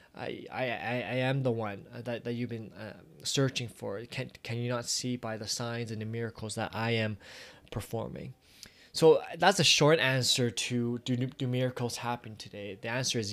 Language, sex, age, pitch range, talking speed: English, male, 20-39, 110-125 Hz, 190 wpm